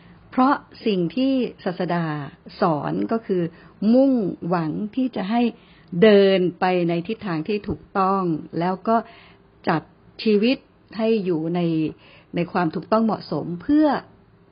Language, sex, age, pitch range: Thai, female, 60-79, 170-220 Hz